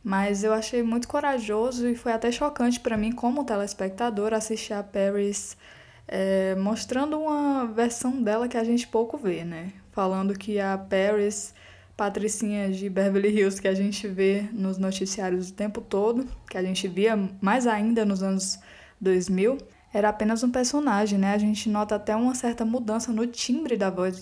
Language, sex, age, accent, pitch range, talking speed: Portuguese, female, 10-29, Brazilian, 195-235 Hz, 170 wpm